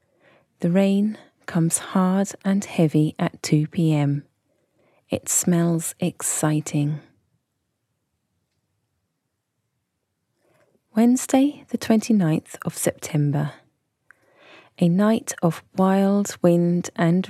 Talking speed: 75 wpm